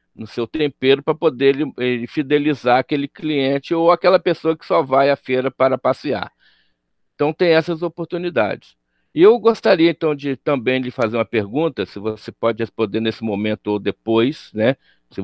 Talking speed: 175 wpm